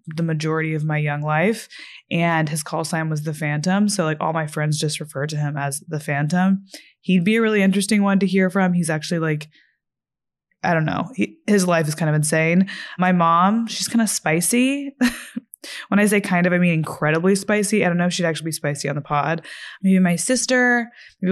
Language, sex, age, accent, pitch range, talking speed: English, female, 20-39, American, 165-205 Hz, 215 wpm